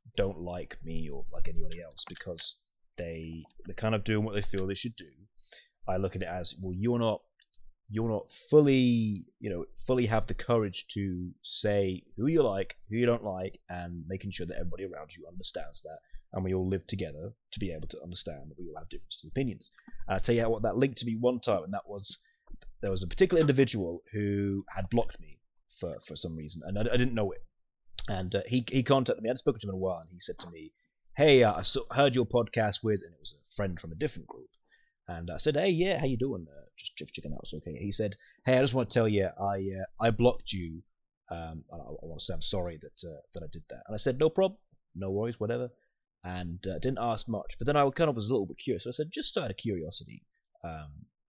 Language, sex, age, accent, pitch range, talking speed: English, male, 30-49, British, 90-125 Hz, 250 wpm